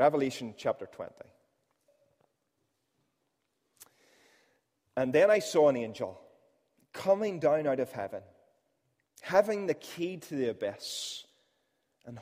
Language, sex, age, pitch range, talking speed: English, male, 30-49, 120-150 Hz, 105 wpm